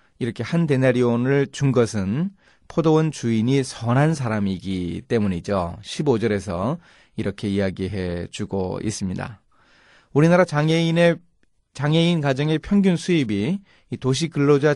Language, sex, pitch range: Korean, male, 100-140 Hz